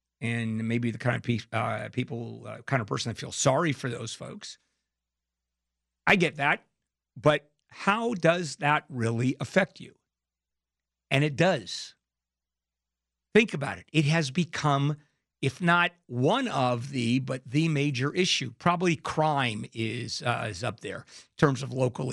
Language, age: English, 50-69